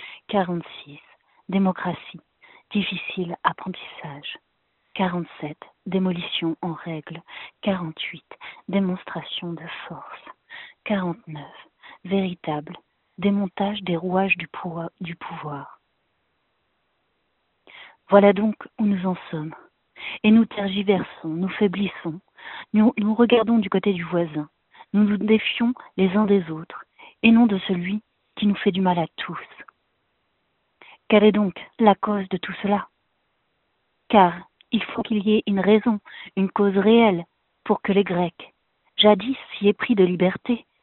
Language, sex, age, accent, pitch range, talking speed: French, female, 40-59, French, 180-215 Hz, 120 wpm